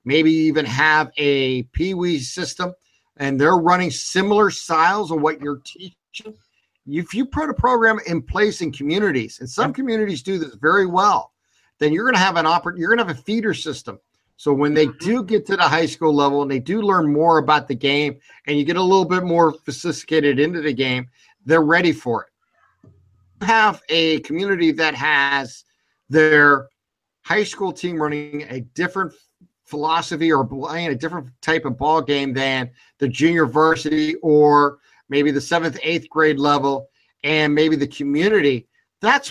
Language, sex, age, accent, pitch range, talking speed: English, male, 50-69, American, 140-175 Hz, 175 wpm